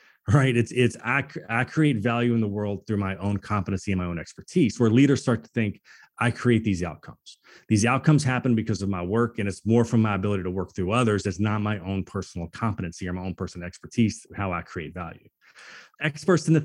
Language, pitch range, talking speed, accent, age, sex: English, 100-135 Hz, 225 wpm, American, 30-49, male